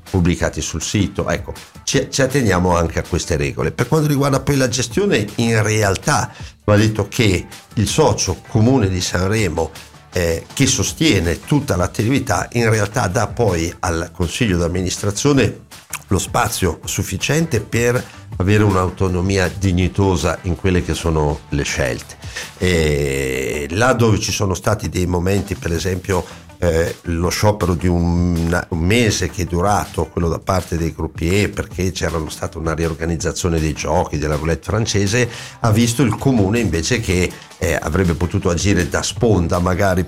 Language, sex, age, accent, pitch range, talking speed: Italian, male, 50-69, native, 85-105 Hz, 150 wpm